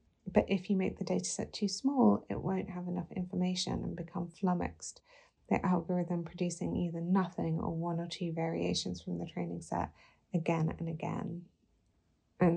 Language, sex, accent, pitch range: Japanese, female, British, 170-195 Hz